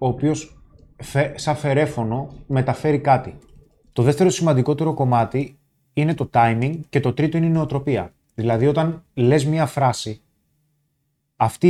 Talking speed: 135 wpm